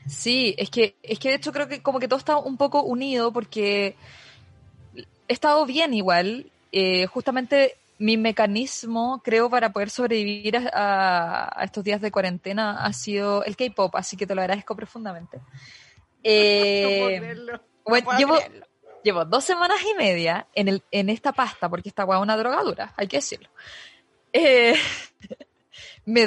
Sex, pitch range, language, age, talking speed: female, 195-260 Hz, Spanish, 20-39, 155 wpm